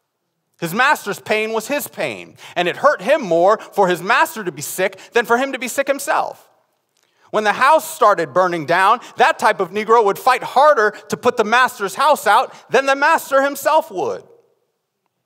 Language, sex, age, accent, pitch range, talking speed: English, male, 30-49, American, 170-275 Hz, 190 wpm